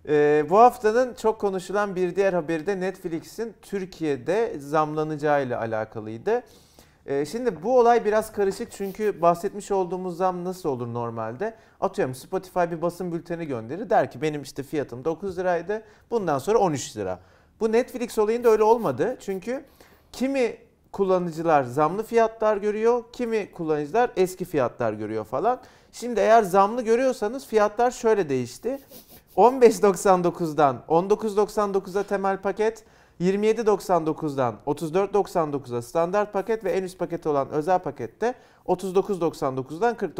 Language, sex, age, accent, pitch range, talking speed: Turkish, male, 40-59, native, 155-220 Hz, 120 wpm